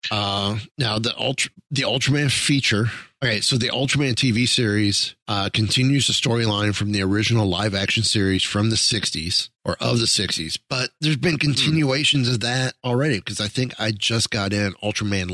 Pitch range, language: 95-120 Hz, English